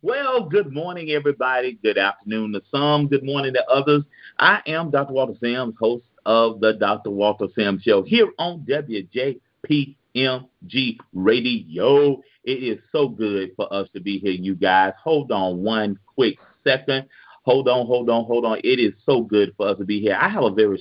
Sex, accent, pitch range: male, American, 105-140 Hz